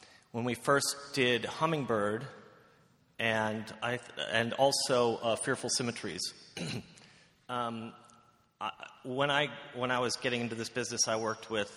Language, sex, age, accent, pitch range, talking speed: English, male, 30-49, American, 105-125 Hz, 140 wpm